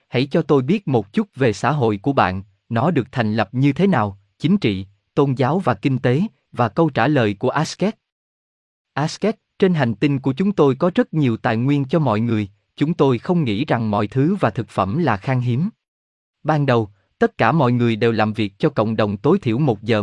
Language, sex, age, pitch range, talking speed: Vietnamese, male, 20-39, 110-155 Hz, 225 wpm